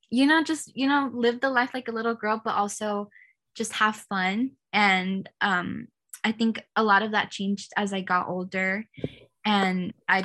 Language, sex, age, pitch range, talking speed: English, female, 10-29, 195-225 Hz, 185 wpm